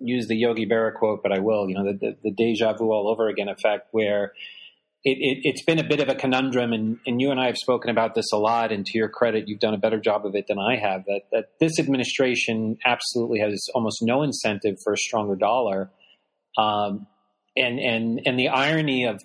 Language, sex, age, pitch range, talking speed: English, male, 40-59, 110-130 Hz, 235 wpm